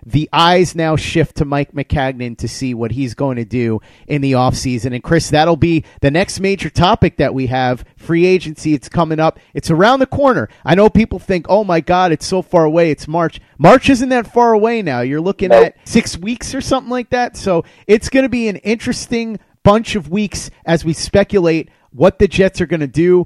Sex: male